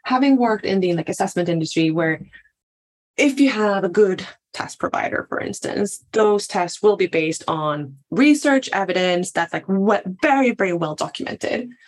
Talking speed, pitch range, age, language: 155 wpm, 185-245 Hz, 20-39, English